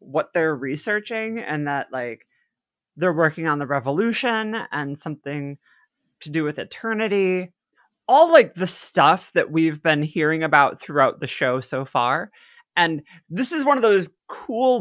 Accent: American